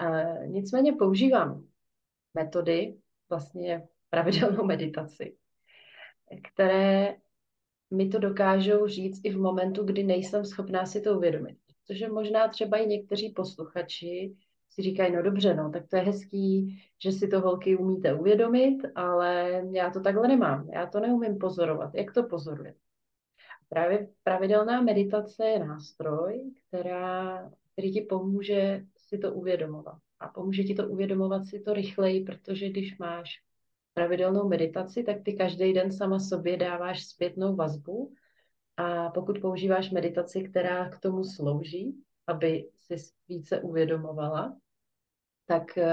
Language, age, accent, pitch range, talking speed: Czech, 30-49, native, 175-200 Hz, 130 wpm